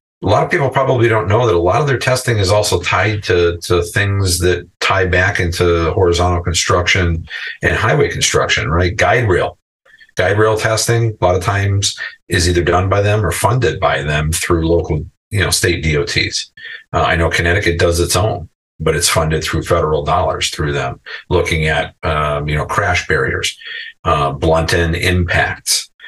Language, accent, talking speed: English, American, 180 wpm